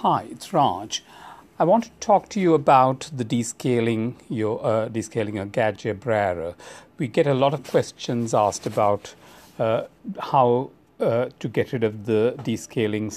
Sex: male